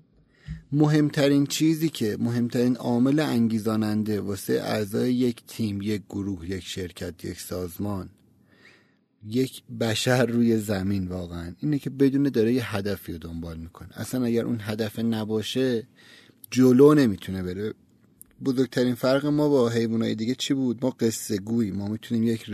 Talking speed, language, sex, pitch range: 140 wpm, Persian, male, 110-130 Hz